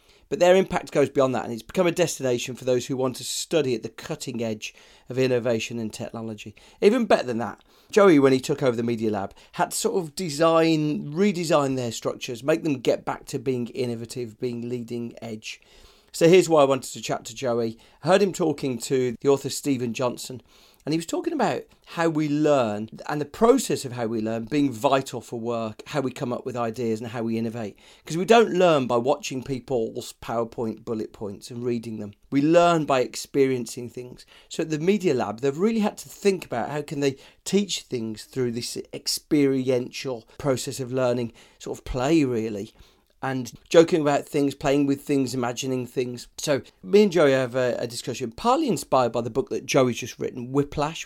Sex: male